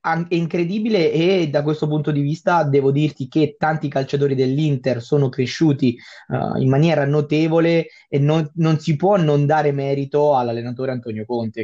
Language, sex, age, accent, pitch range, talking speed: Italian, male, 20-39, native, 130-155 Hz, 160 wpm